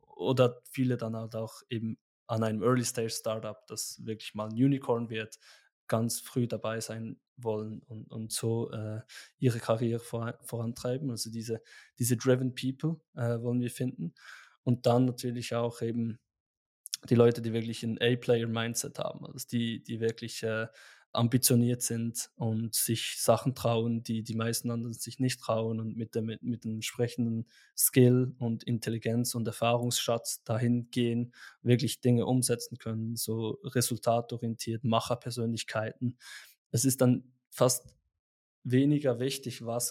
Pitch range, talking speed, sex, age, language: 115-125 Hz, 140 wpm, male, 20-39, English